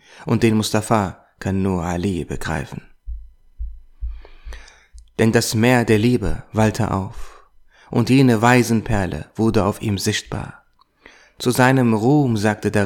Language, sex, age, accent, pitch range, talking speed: German, male, 30-49, German, 100-120 Hz, 120 wpm